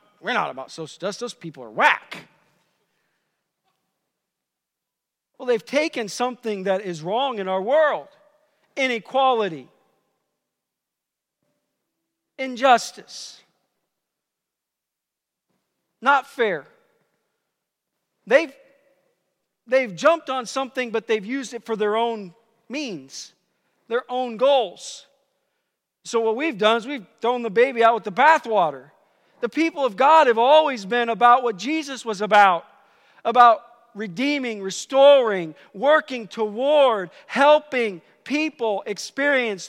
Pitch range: 205-265 Hz